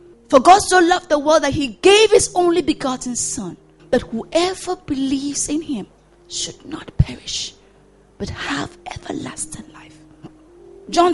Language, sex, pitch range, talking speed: English, female, 205-320 Hz, 140 wpm